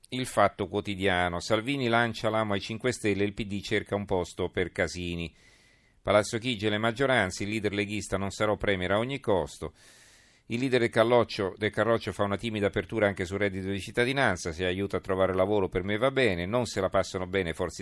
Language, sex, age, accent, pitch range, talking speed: Italian, male, 40-59, native, 90-110 Hz, 200 wpm